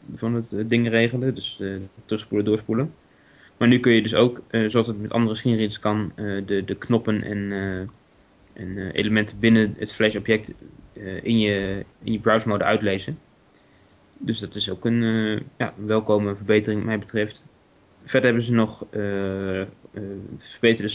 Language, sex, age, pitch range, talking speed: Dutch, male, 20-39, 105-115 Hz, 175 wpm